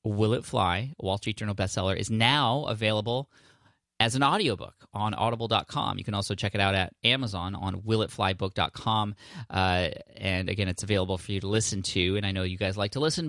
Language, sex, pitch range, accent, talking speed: English, male, 95-115 Hz, American, 190 wpm